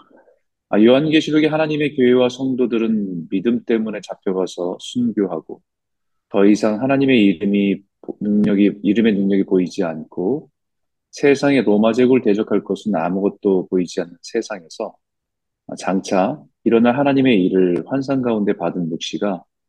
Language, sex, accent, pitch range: Korean, male, native, 100-135 Hz